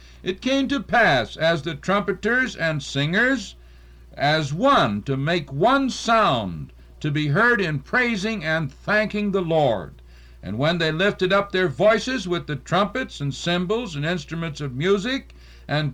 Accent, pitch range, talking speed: American, 135-210 Hz, 155 wpm